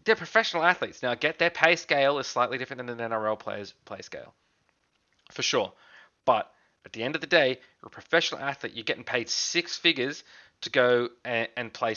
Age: 20-39